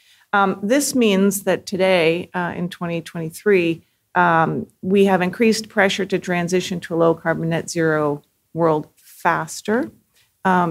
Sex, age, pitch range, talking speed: female, 40-59, 160-190 Hz, 125 wpm